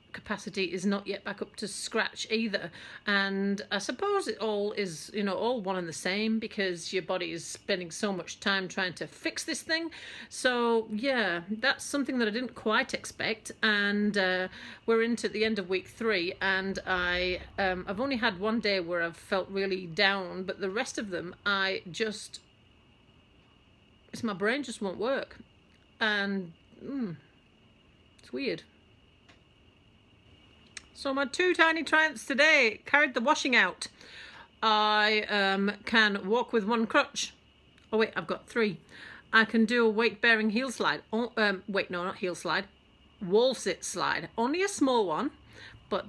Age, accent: 40-59, British